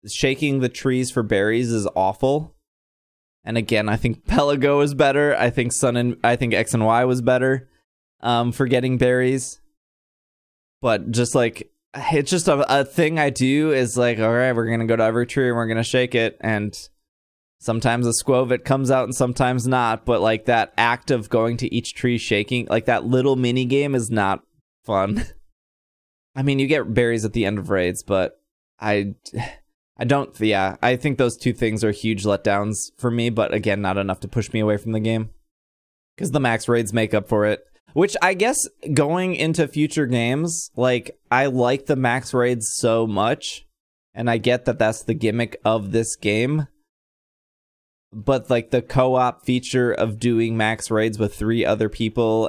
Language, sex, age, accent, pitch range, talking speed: English, male, 20-39, American, 110-130 Hz, 185 wpm